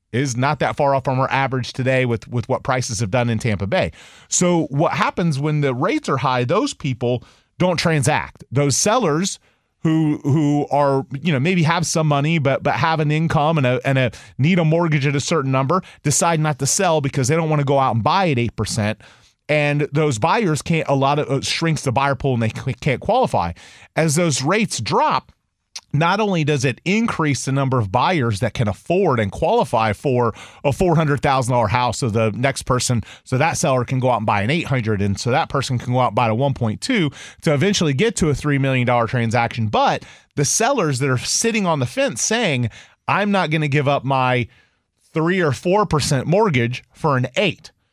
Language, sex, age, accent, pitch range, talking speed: English, male, 30-49, American, 125-160 Hz, 210 wpm